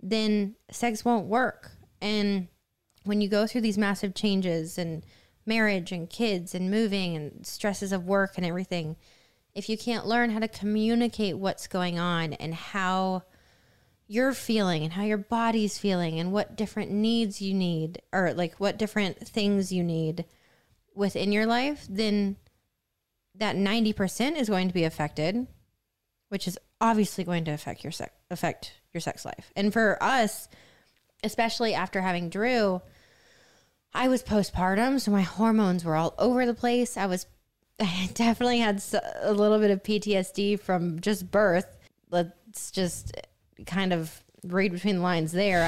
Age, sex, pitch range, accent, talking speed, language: 20-39, female, 175-215 Hz, American, 155 wpm, English